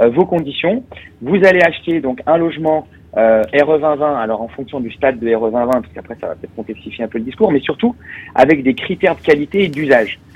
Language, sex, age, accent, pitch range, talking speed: French, male, 30-49, French, 115-155 Hz, 210 wpm